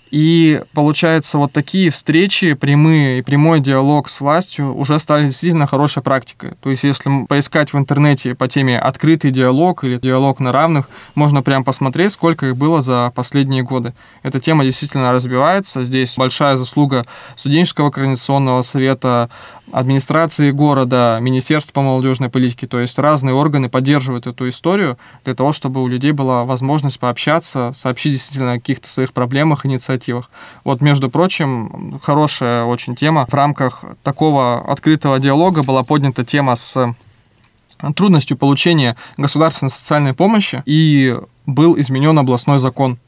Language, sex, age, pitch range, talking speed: Russian, male, 20-39, 130-150 Hz, 140 wpm